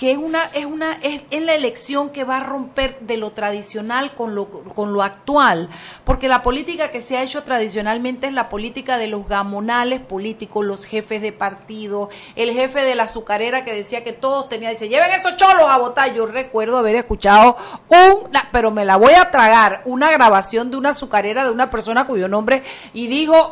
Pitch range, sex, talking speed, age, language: 220-290 Hz, female, 200 wpm, 40-59, Spanish